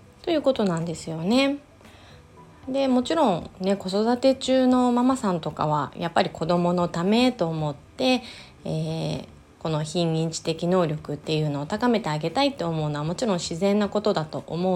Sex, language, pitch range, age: female, Japanese, 155-235 Hz, 20-39